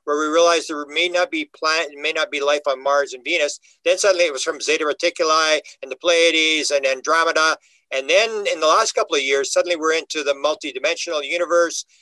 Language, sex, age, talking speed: English, male, 50-69, 210 wpm